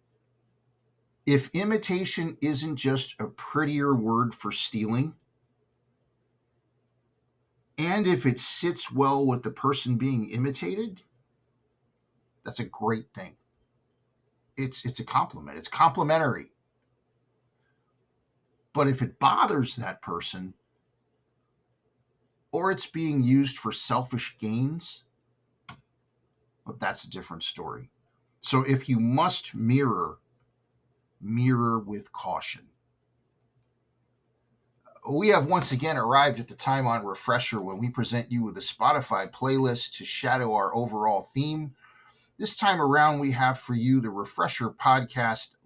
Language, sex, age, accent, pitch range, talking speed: English, male, 50-69, American, 115-140 Hz, 115 wpm